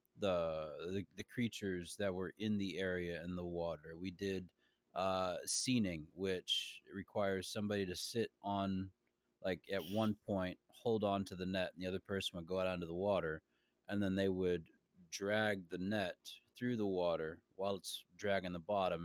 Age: 30-49